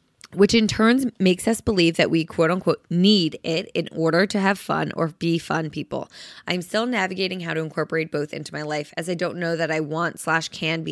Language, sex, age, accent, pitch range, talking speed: English, female, 20-39, American, 155-195 Hz, 225 wpm